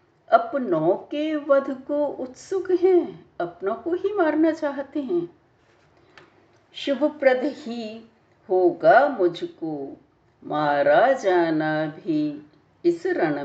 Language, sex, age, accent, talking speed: Hindi, female, 60-79, native, 100 wpm